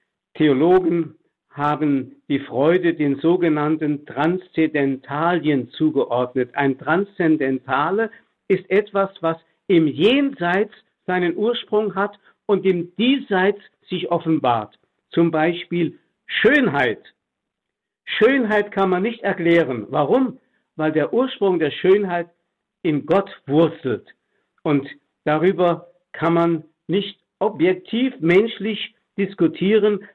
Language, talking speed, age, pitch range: German, 95 wpm, 60-79, 155-205 Hz